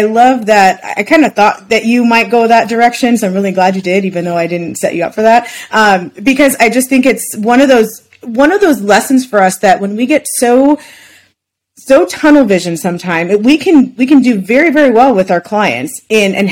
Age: 30-49